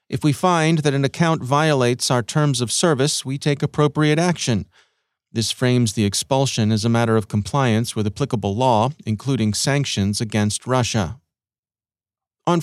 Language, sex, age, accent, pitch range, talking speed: English, male, 40-59, American, 115-145 Hz, 150 wpm